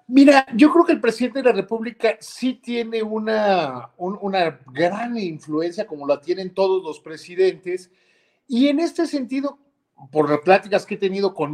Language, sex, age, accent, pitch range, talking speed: Spanish, male, 50-69, Mexican, 175-235 Hz, 170 wpm